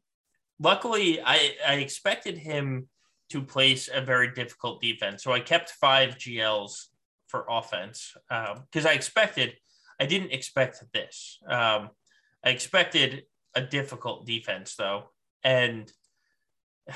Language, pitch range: English, 120-150 Hz